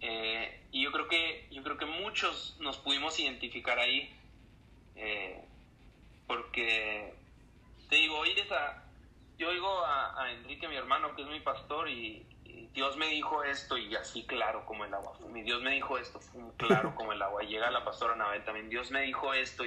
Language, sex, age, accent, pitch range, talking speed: Spanish, male, 30-49, Mexican, 115-150 Hz, 190 wpm